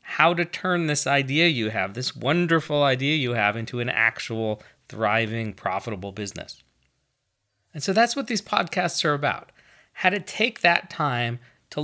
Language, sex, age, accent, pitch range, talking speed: English, male, 40-59, American, 120-175 Hz, 160 wpm